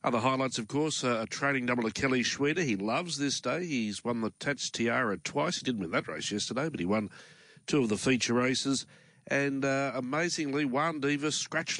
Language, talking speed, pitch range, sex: English, 210 wpm, 110-145 Hz, male